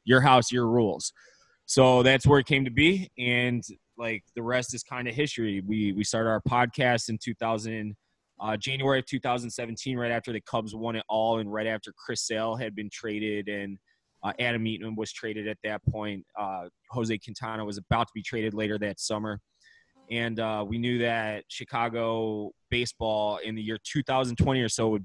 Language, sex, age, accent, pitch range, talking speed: English, male, 20-39, American, 110-125 Hz, 190 wpm